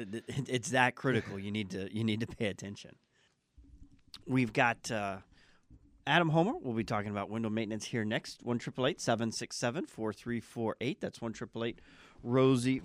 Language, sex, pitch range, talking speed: English, male, 100-125 Hz, 180 wpm